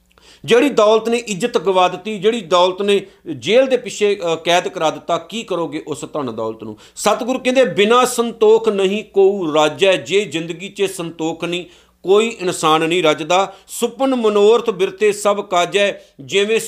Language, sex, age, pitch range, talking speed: Punjabi, male, 50-69, 150-195 Hz, 160 wpm